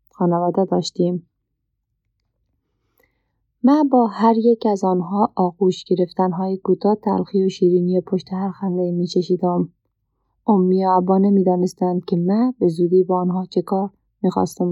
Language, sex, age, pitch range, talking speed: Persian, female, 30-49, 180-200 Hz, 120 wpm